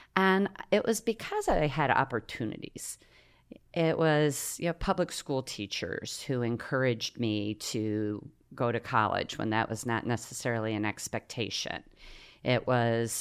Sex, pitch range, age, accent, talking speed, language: female, 110-155 Hz, 40-59, American, 135 wpm, English